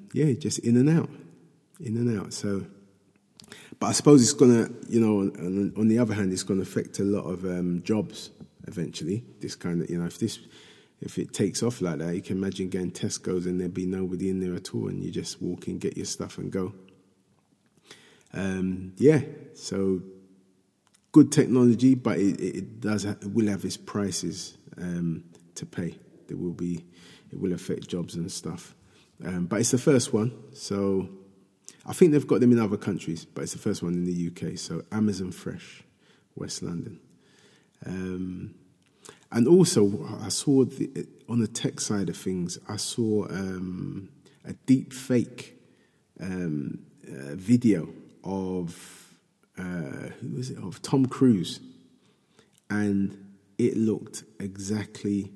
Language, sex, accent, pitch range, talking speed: English, male, British, 95-115 Hz, 165 wpm